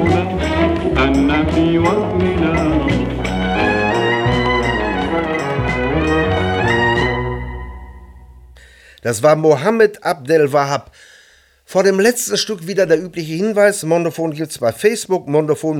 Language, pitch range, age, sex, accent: English, 120-170 Hz, 60-79, male, German